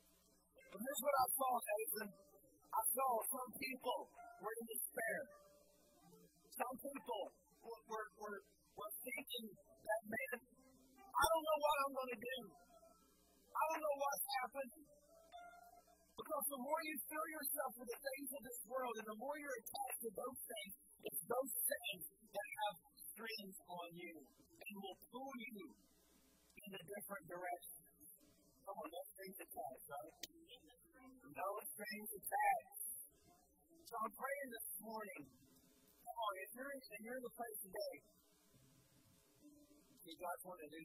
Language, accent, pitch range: English, American, 195-270 Hz